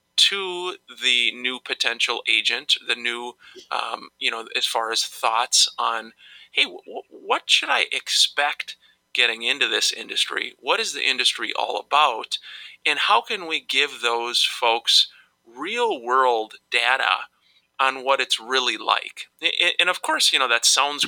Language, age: English, 30-49